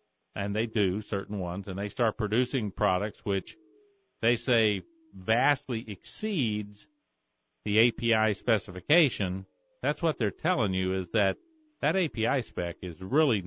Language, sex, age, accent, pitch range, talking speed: English, male, 50-69, American, 100-130 Hz, 135 wpm